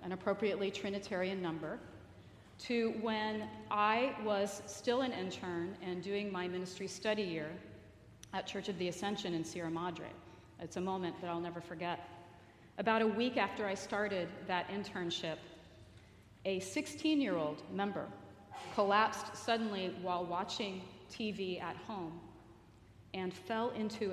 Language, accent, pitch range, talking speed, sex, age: English, American, 160-205 Hz, 130 wpm, female, 40-59